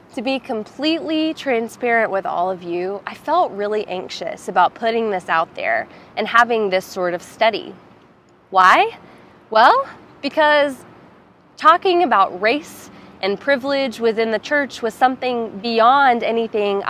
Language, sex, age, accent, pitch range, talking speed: English, female, 20-39, American, 190-250 Hz, 135 wpm